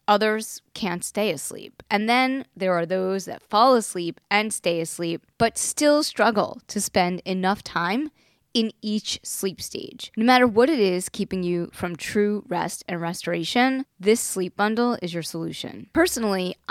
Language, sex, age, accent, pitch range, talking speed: English, female, 20-39, American, 175-225 Hz, 160 wpm